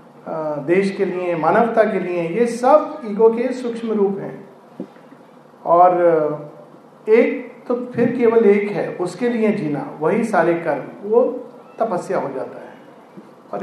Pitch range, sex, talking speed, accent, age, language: 175-235 Hz, male, 140 wpm, native, 40-59, Hindi